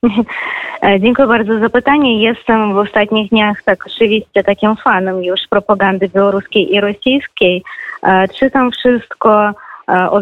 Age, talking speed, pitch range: 20-39, 120 wpm, 195-240 Hz